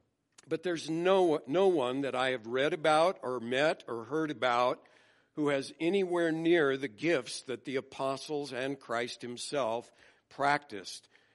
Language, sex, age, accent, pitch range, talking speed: English, male, 60-79, American, 120-145 Hz, 150 wpm